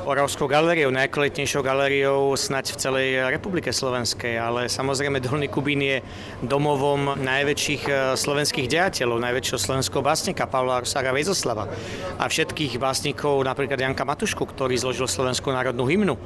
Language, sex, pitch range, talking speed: Czech, male, 125-150 Hz, 130 wpm